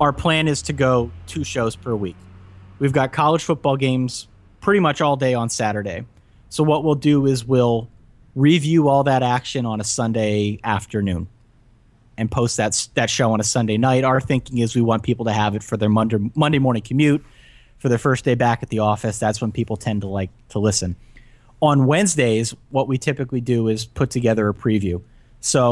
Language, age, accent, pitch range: English, 30-49, American, 110-130 Hz